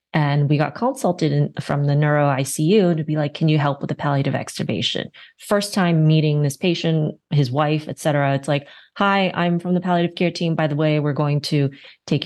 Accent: American